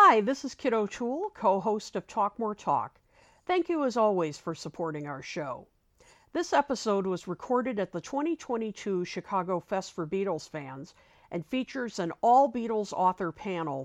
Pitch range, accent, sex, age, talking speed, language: 160-225 Hz, American, female, 50-69, 155 wpm, English